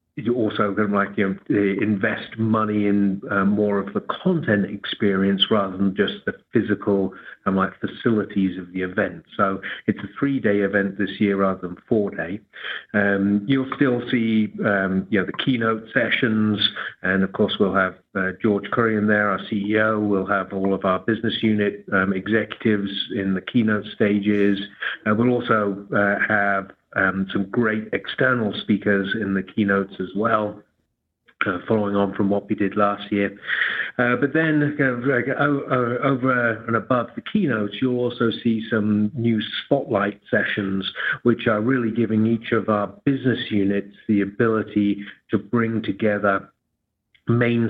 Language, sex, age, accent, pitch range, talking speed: English, male, 50-69, British, 100-115 Hz, 165 wpm